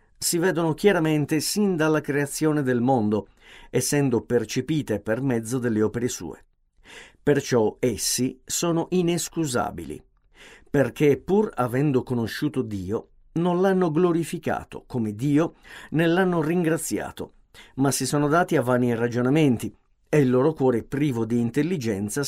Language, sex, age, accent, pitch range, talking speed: Italian, male, 50-69, native, 120-155 Hz, 125 wpm